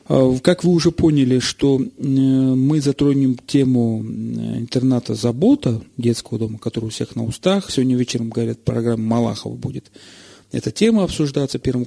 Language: Russian